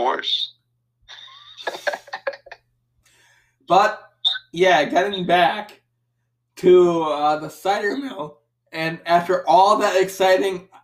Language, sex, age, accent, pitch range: English, male, 20-39, American, 145-180 Hz